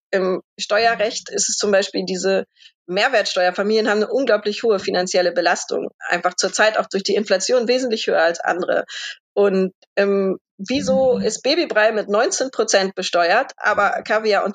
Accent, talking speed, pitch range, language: German, 150 wpm, 195-255 Hz, German